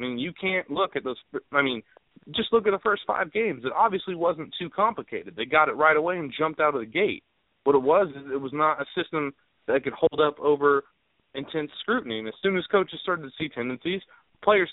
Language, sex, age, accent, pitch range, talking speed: English, male, 30-49, American, 125-165 Hz, 235 wpm